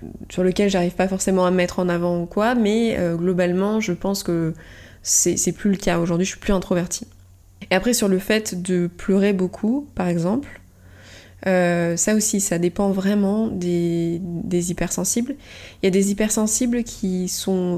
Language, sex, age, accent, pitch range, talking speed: French, female, 20-39, French, 170-195 Hz, 180 wpm